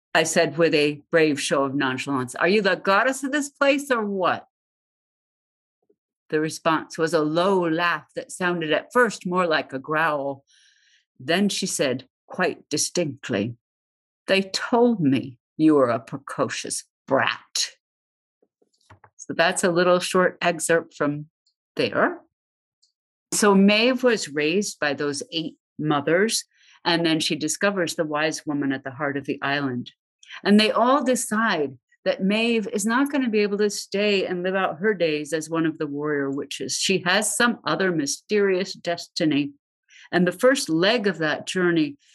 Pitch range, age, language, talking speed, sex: 145-195 Hz, 50-69, English, 160 wpm, female